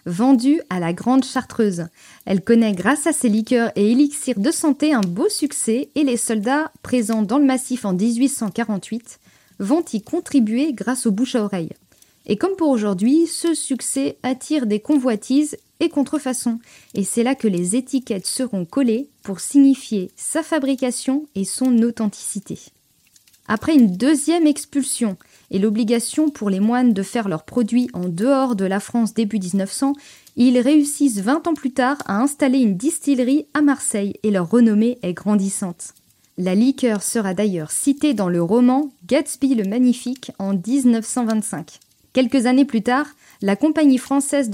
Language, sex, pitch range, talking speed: French, female, 210-275 Hz, 160 wpm